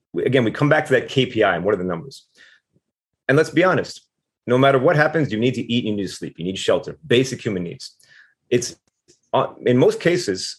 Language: English